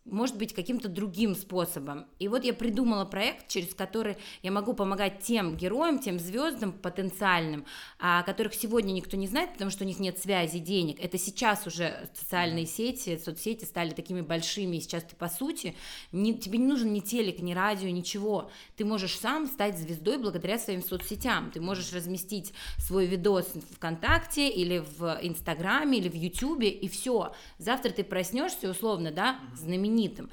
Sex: female